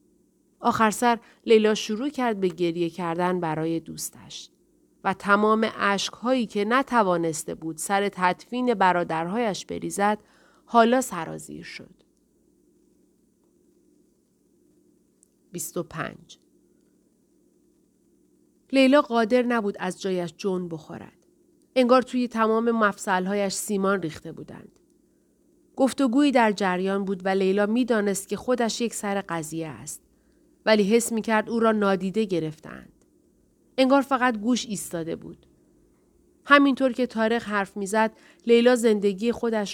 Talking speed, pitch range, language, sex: 110 wpm, 180-230 Hz, Persian, female